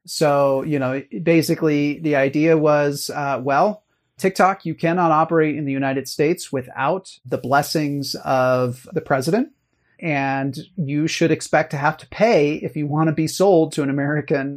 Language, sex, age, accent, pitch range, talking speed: English, male, 30-49, American, 135-165 Hz, 165 wpm